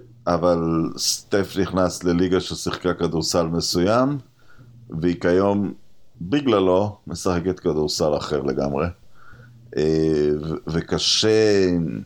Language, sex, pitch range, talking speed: Hebrew, male, 85-110 Hz, 80 wpm